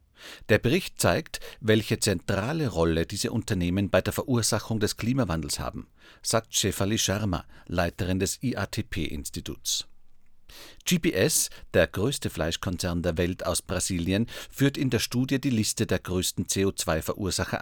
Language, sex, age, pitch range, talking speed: German, male, 50-69, 90-115 Hz, 125 wpm